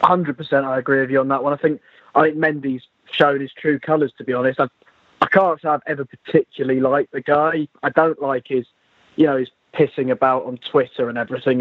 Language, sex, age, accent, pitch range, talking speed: English, male, 20-39, British, 125-145 Hz, 220 wpm